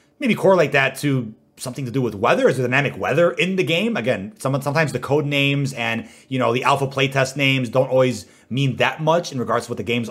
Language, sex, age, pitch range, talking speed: English, male, 30-49, 125-165 Hz, 235 wpm